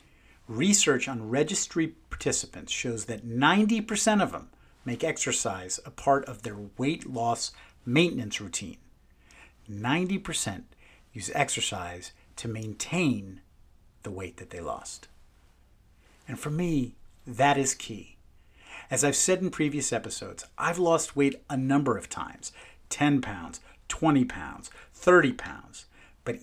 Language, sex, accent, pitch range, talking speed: English, male, American, 100-145 Hz, 125 wpm